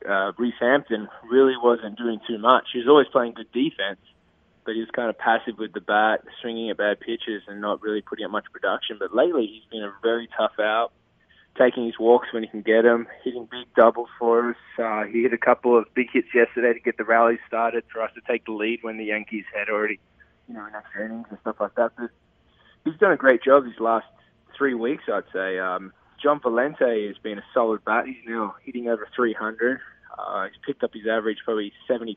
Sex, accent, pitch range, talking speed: male, Australian, 105-120 Hz, 230 wpm